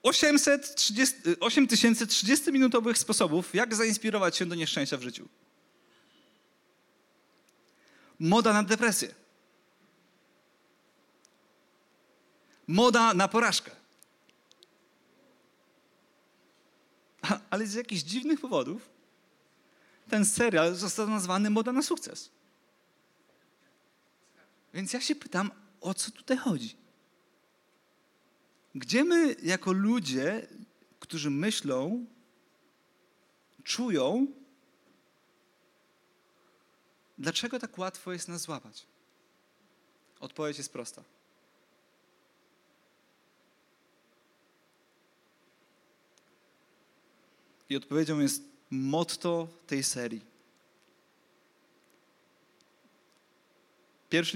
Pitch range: 165-245 Hz